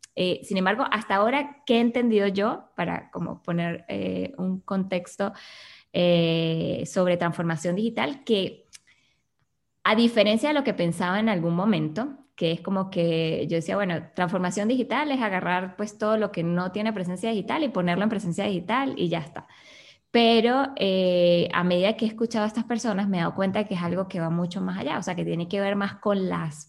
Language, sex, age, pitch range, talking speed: Spanish, female, 20-39, 175-220 Hz, 195 wpm